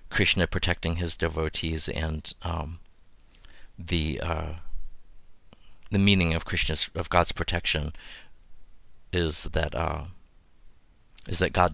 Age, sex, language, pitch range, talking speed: 50-69, male, English, 80-90 Hz, 105 wpm